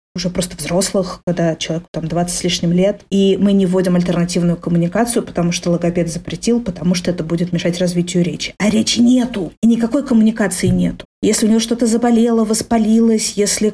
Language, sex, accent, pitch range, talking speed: Russian, female, native, 175-215 Hz, 180 wpm